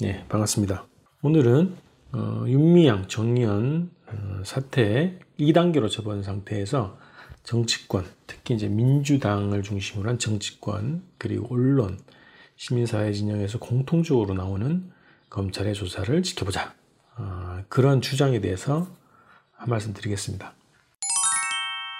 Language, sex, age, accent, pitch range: Korean, male, 40-59, native, 105-145 Hz